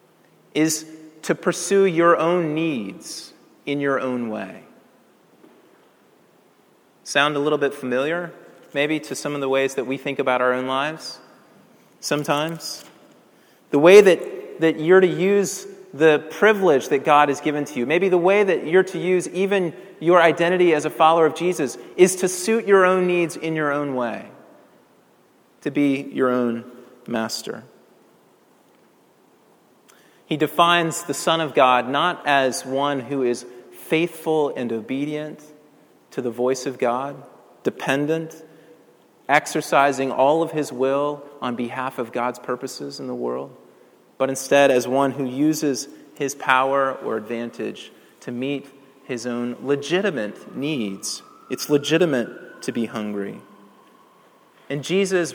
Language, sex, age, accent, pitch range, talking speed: English, male, 30-49, American, 130-165 Hz, 140 wpm